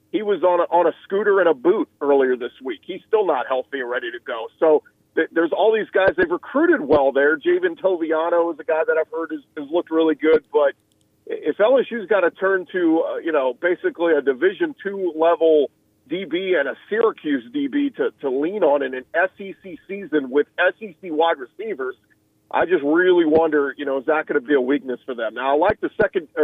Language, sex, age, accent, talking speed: English, male, 40-59, American, 220 wpm